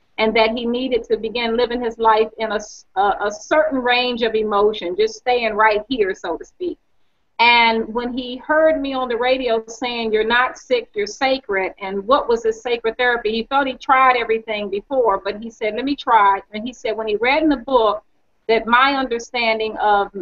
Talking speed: 205 wpm